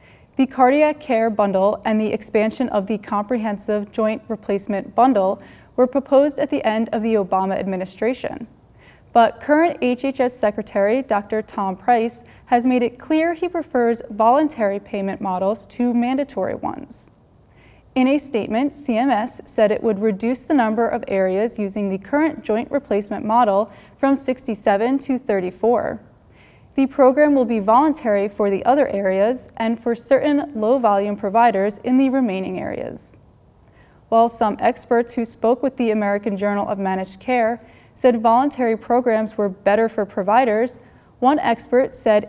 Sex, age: female, 20-39